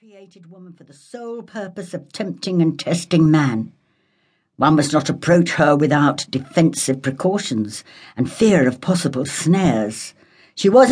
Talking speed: 145 wpm